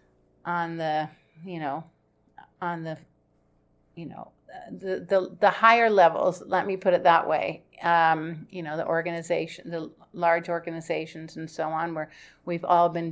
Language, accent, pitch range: English, American, 155-185 Hz